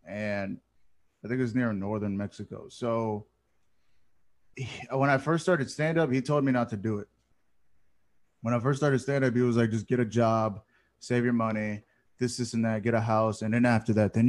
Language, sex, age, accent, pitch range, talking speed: English, male, 20-39, American, 110-130 Hz, 195 wpm